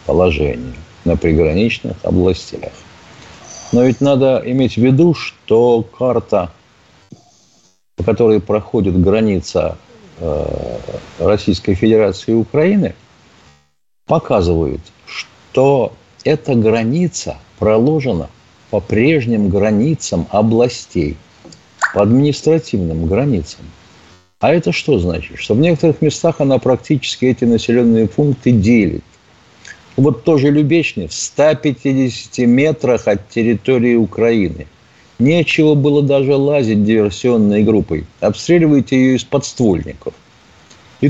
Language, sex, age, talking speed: Russian, male, 50-69, 95 wpm